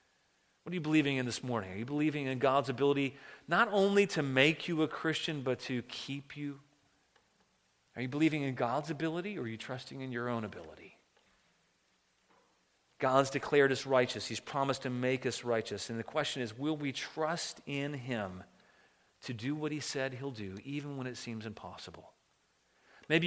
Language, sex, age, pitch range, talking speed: English, male, 40-59, 125-155 Hz, 180 wpm